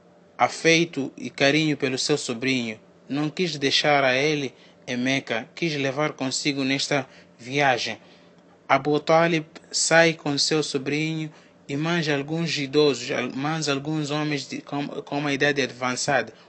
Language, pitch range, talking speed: Portuguese, 135-160 Hz, 130 wpm